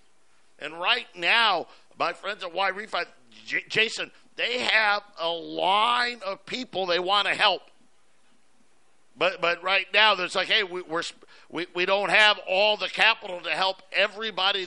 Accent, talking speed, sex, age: American, 155 wpm, male, 50-69